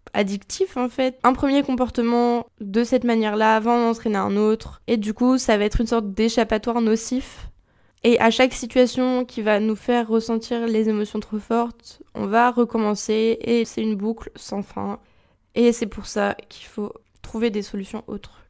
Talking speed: 185 wpm